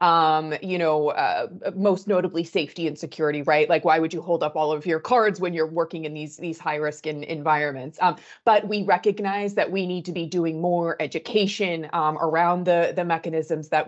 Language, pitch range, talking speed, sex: English, 160-195 Hz, 210 wpm, female